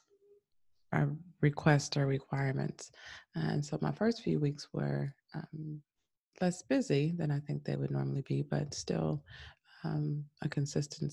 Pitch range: 135-155 Hz